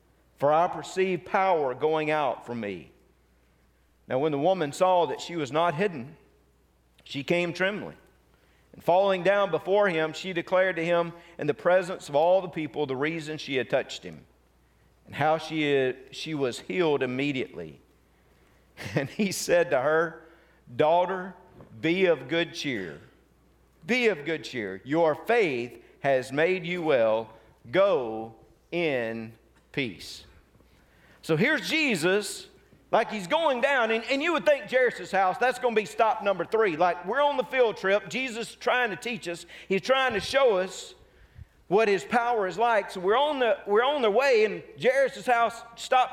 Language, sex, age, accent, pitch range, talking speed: English, male, 50-69, American, 150-240 Hz, 165 wpm